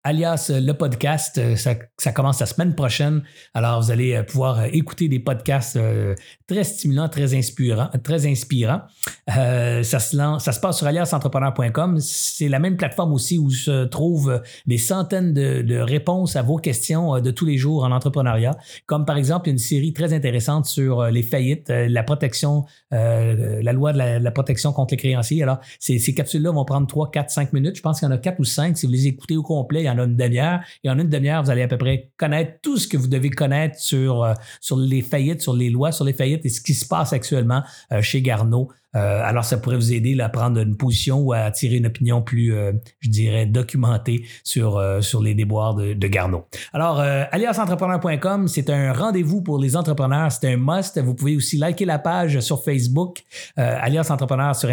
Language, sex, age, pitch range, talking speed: French, male, 50-69, 125-155 Hz, 210 wpm